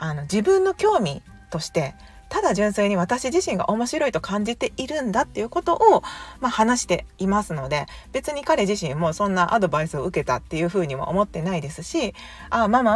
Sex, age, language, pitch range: female, 40-59, Japanese, 155-235 Hz